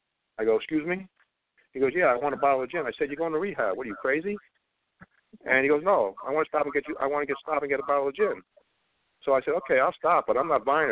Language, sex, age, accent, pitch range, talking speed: English, male, 50-69, American, 130-200 Hz, 300 wpm